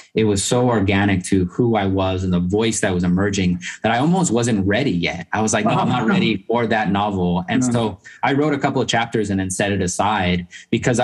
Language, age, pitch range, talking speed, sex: English, 20-39, 90-110 Hz, 240 wpm, male